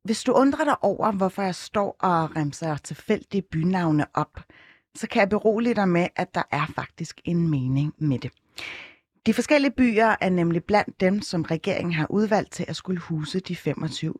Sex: female